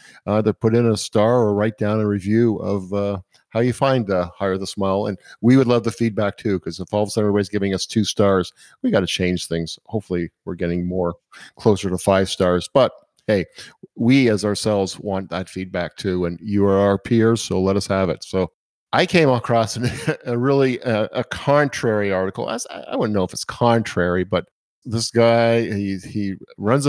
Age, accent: 50-69, American